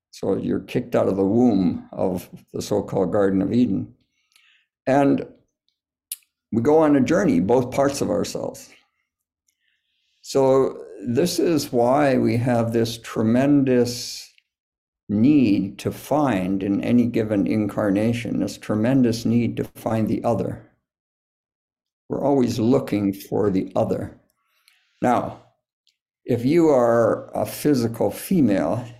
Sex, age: male, 60-79